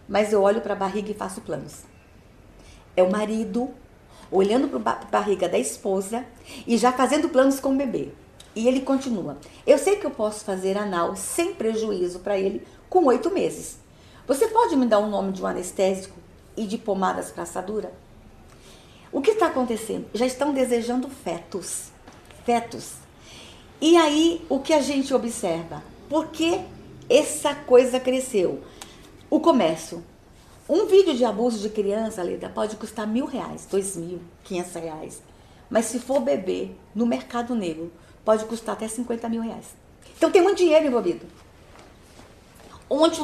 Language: Portuguese